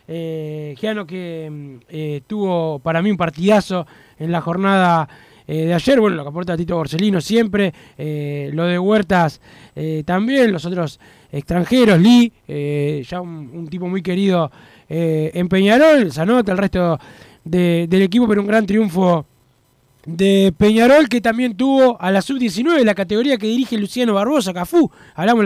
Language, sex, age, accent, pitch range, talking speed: Spanish, male, 20-39, Argentinian, 170-220 Hz, 160 wpm